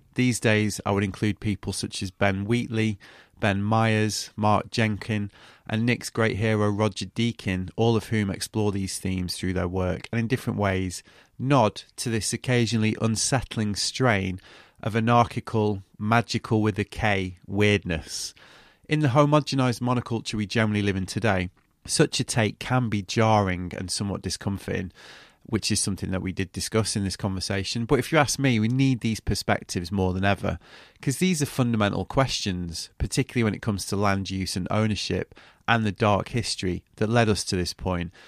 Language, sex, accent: English, male, British